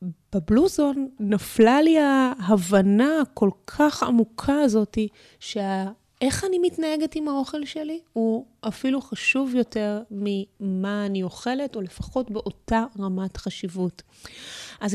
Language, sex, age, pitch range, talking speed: Hebrew, female, 20-39, 195-245 Hz, 110 wpm